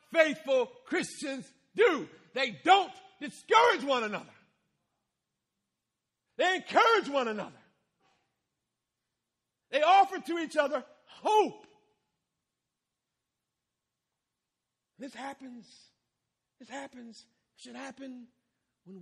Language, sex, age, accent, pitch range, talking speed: English, male, 50-69, American, 195-295 Hz, 80 wpm